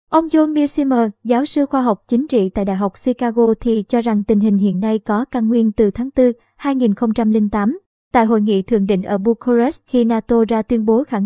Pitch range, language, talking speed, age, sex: 215-250 Hz, Vietnamese, 215 wpm, 20-39, male